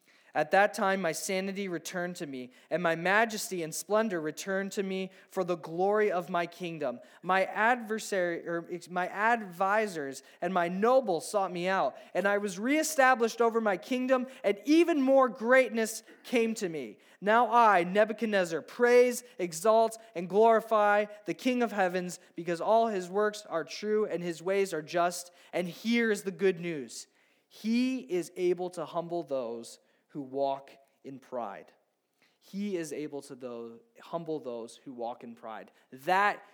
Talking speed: 160 wpm